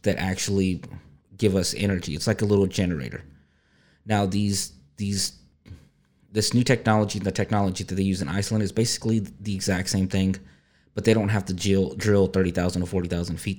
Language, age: English, 30-49